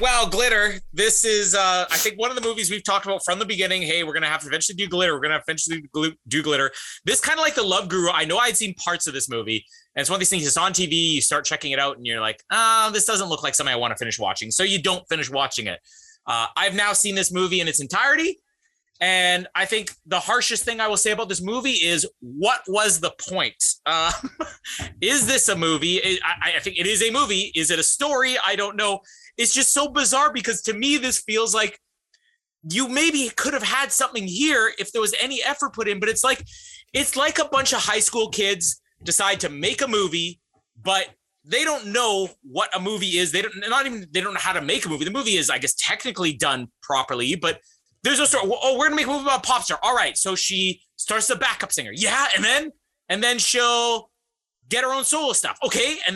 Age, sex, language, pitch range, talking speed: 30-49, male, English, 180-260 Hz, 245 wpm